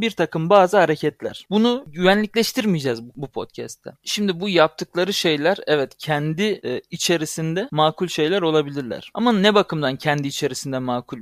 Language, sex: Turkish, male